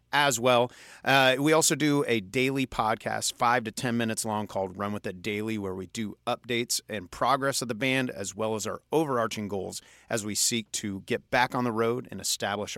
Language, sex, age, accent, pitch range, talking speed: English, male, 30-49, American, 105-135 Hz, 210 wpm